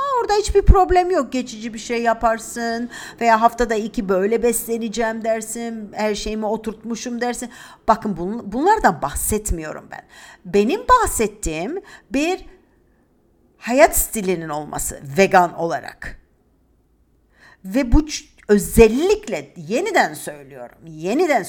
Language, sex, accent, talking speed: Turkish, female, native, 105 wpm